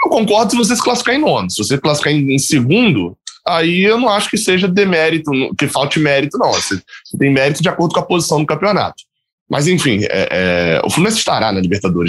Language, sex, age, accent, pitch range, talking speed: Portuguese, male, 10-29, Brazilian, 105-175 Hz, 220 wpm